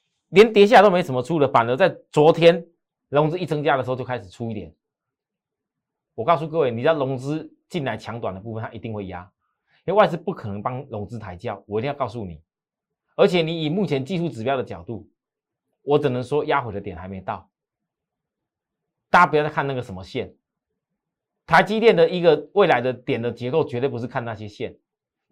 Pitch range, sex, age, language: 110-160 Hz, male, 30-49, Chinese